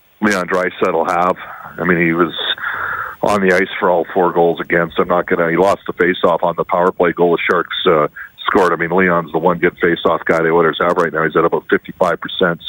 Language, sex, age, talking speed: English, male, 40-59, 235 wpm